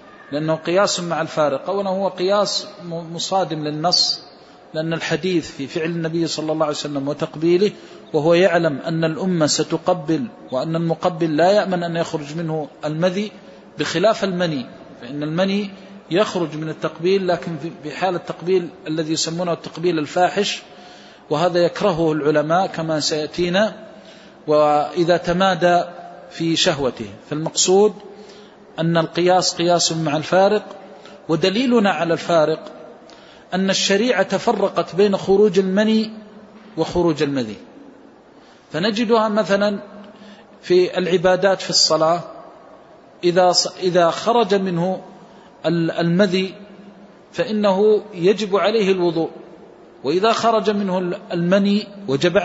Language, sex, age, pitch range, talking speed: Arabic, male, 40-59, 165-200 Hz, 105 wpm